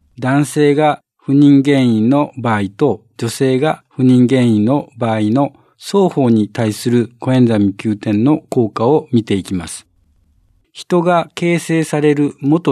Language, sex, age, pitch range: Japanese, male, 50-69, 110-150 Hz